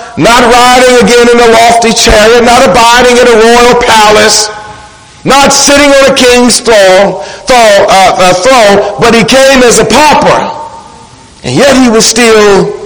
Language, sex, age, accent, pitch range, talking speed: English, male, 50-69, American, 210-250 Hz, 160 wpm